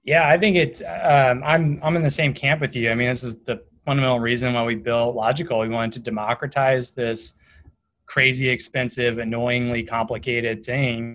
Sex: male